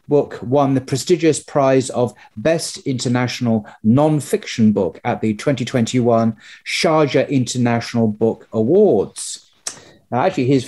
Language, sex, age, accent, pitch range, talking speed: English, male, 40-59, British, 120-150 Hz, 110 wpm